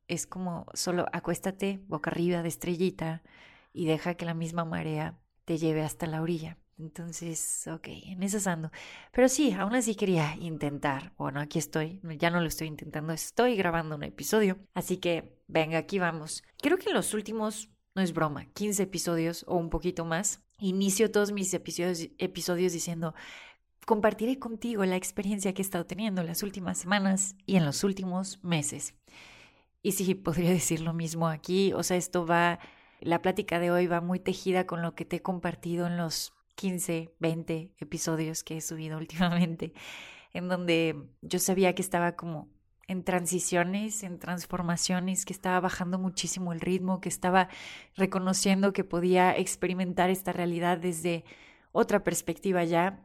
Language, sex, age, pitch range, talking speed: Spanish, female, 30-49, 165-190 Hz, 165 wpm